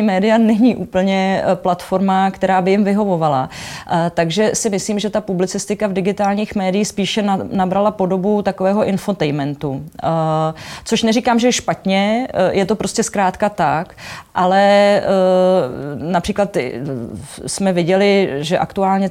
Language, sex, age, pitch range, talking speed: Czech, female, 30-49, 170-195 Hz, 120 wpm